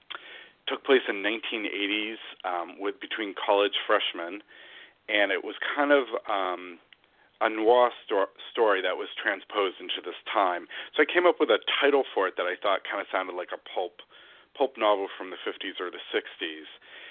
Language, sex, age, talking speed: English, male, 40-59, 180 wpm